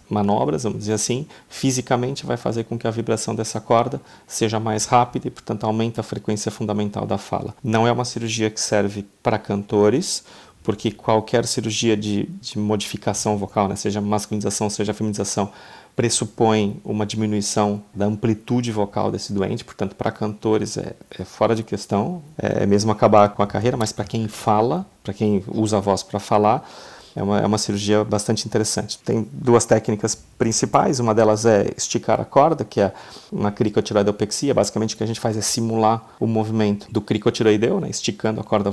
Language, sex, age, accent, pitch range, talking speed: Portuguese, male, 40-59, Brazilian, 105-115 Hz, 175 wpm